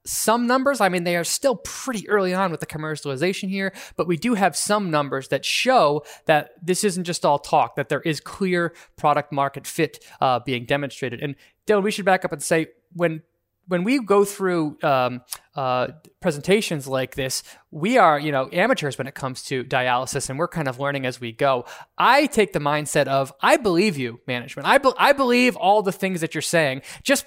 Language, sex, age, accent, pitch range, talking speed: English, male, 20-39, American, 140-190 Hz, 205 wpm